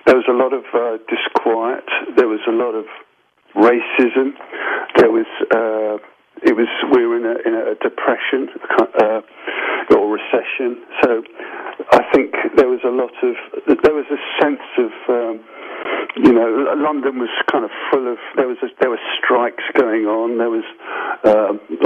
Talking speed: 165 wpm